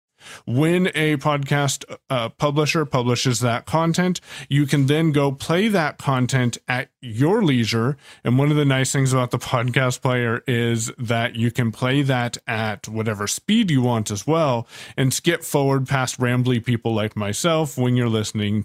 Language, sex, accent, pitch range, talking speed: English, male, American, 120-150 Hz, 165 wpm